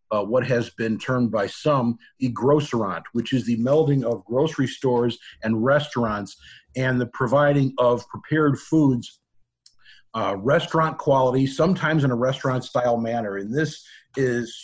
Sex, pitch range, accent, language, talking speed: male, 125-150 Hz, American, English, 140 wpm